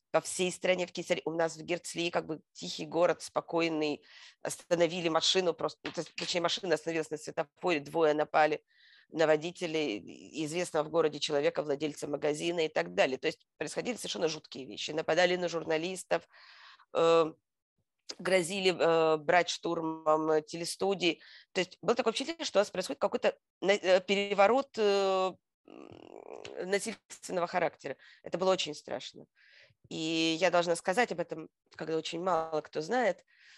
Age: 20-39